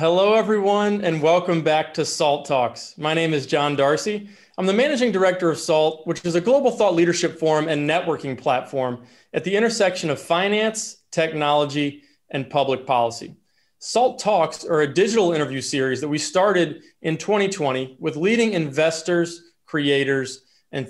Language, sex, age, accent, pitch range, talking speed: English, male, 30-49, American, 135-165 Hz, 160 wpm